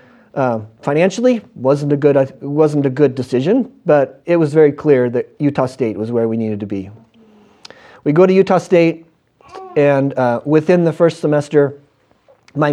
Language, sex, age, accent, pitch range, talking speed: English, male, 40-59, American, 135-170 Hz, 165 wpm